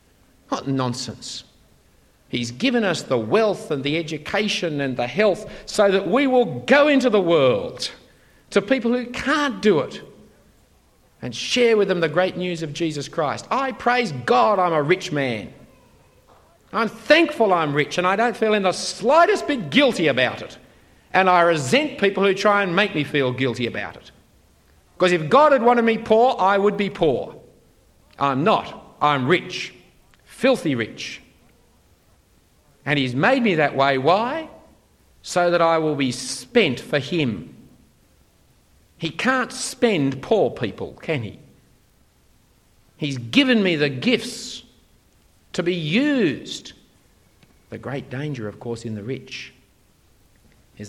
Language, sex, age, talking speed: English, male, 50-69, 150 wpm